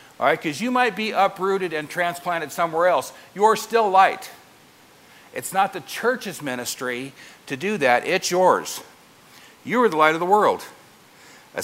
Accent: American